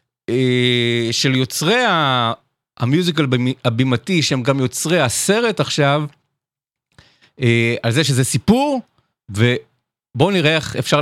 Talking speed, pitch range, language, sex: 95 wpm, 110-150 Hz, Hebrew, male